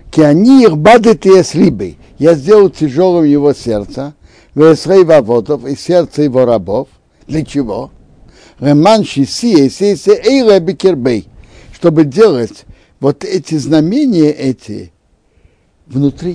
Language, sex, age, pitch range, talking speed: Russian, male, 60-79, 115-155 Hz, 80 wpm